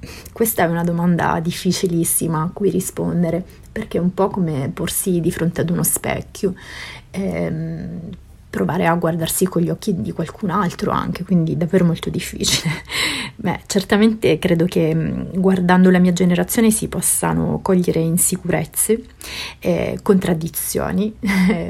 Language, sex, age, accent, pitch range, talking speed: Italian, female, 30-49, native, 160-190 Hz, 135 wpm